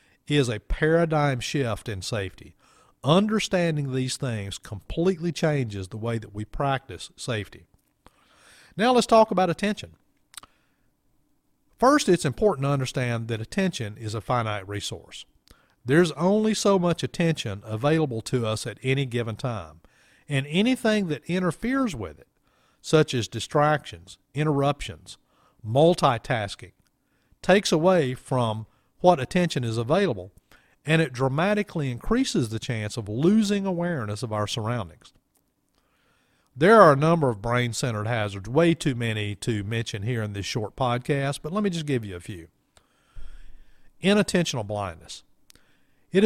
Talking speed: 135 wpm